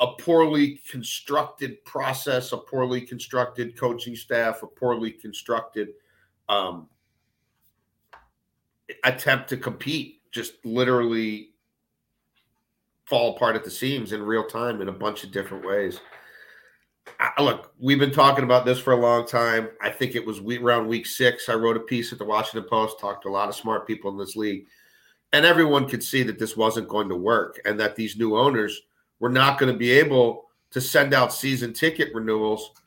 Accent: American